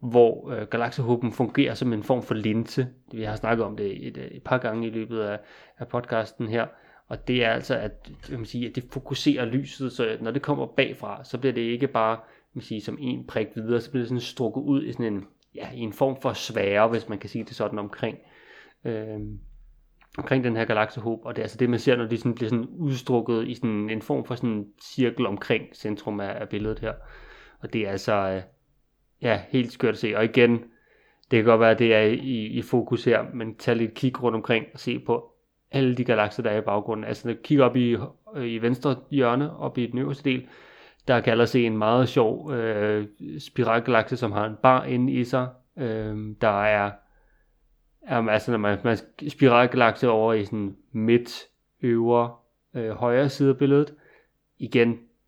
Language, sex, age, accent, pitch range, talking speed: Danish, male, 30-49, native, 110-125 Hz, 210 wpm